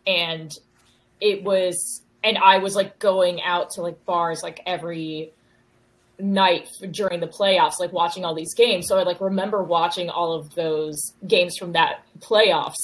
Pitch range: 165-195 Hz